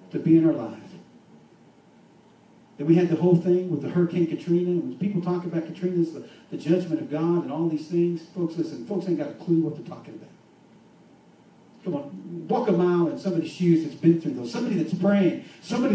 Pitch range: 165-200 Hz